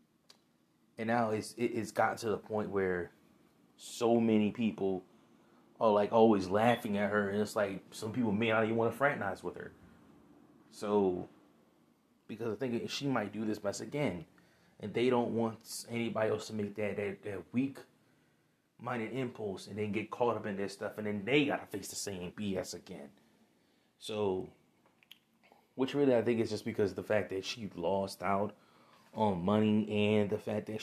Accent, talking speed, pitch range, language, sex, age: American, 180 wpm, 100-115 Hz, English, male, 20-39